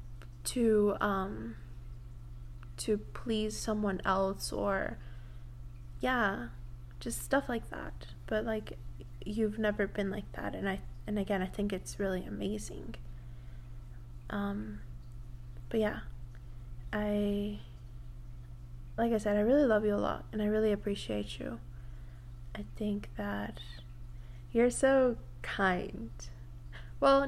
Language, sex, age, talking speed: English, female, 20-39, 115 wpm